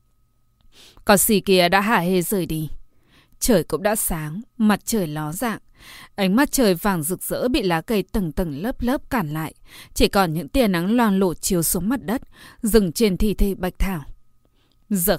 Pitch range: 175-220 Hz